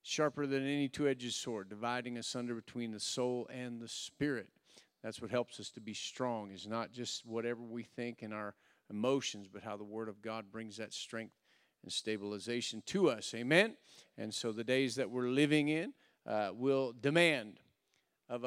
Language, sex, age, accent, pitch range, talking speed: English, male, 50-69, American, 115-140 Hz, 180 wpm